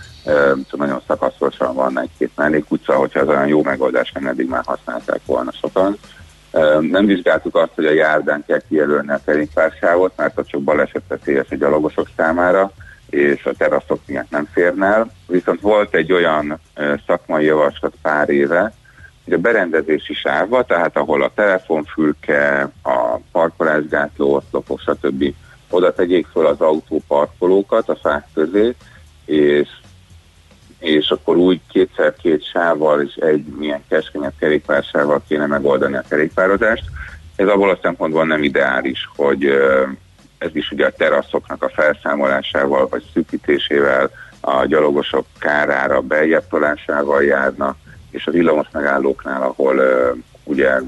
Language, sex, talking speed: Hungarian, male, 140 wpm